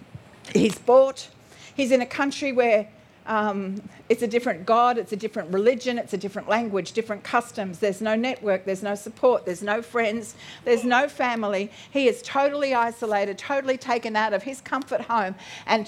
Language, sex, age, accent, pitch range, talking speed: English, female, 50-69, Australian, 220-275 Hz, 175 wpm